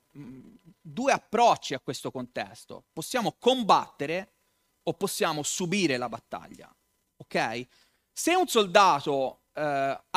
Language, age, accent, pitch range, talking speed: Italian, 30-49, native, 145-220 Hz, 100 wpm